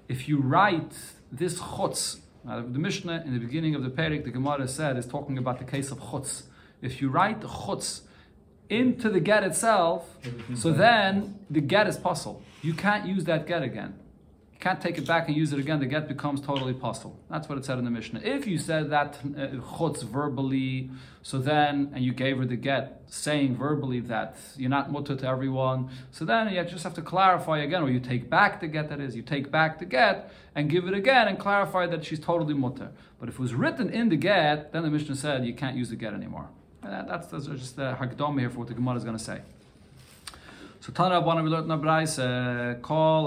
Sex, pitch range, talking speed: male, 130-175 Hz, 210 wpm